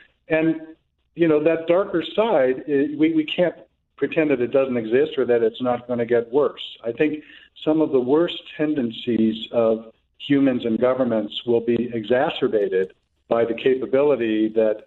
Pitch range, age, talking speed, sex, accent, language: 115-145 Hz, 50-69, 160 wpm, male, American, English